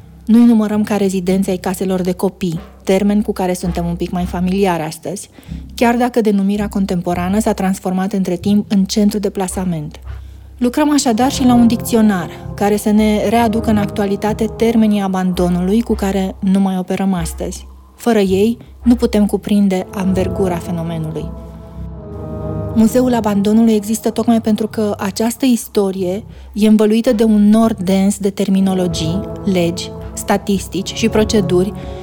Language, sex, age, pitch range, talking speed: Romanian, female, 30-49, 185-225 Hz, 140 wpm